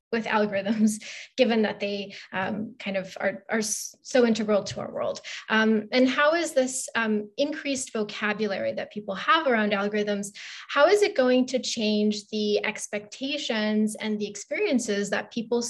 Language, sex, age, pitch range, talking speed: English, female, 20-39, 210-255 Hz, 155 wpm